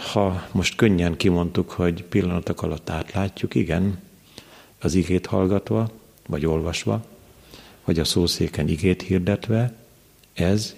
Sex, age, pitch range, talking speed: male, 50-69, 85-100 Hz, 110 wpm